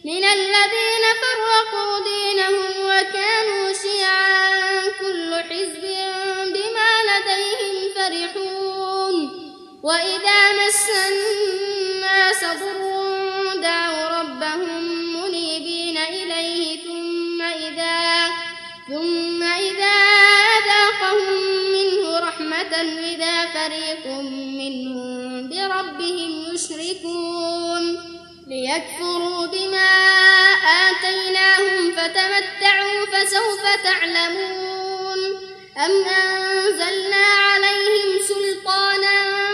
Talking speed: 60 wpm